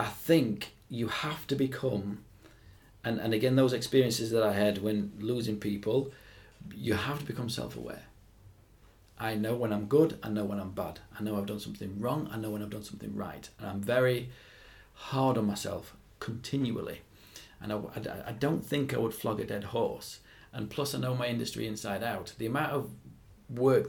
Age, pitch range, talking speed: 40-59, 105-125 Hz, 190 wpm